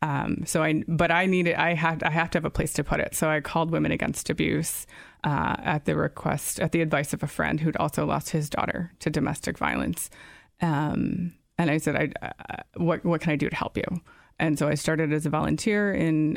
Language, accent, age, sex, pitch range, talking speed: English, American, 20-39, female, 150-170 Hz, 230 wpm